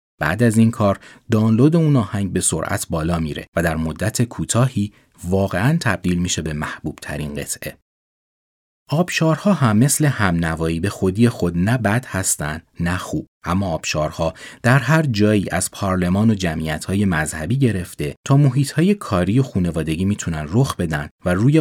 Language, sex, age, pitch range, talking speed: Persian, male, 30-49, 80-120 Hz, 155 wpm